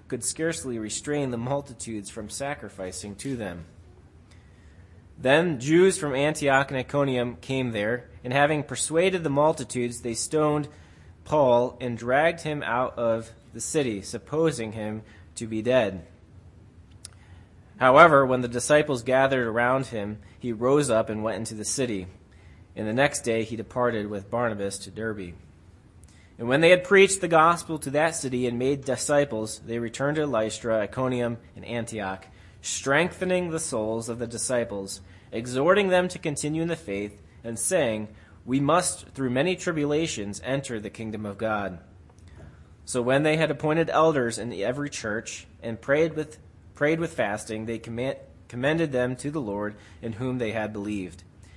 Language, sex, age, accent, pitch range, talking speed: English, male, 30-49, American, 100-140 Hz, 155 wpm